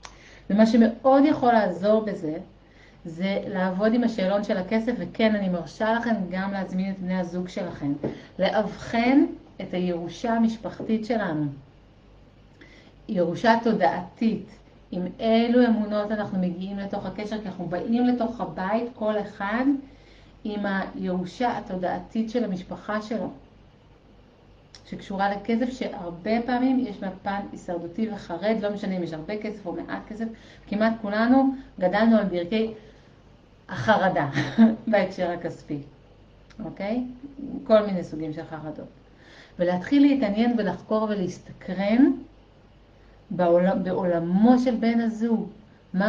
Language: Hebrew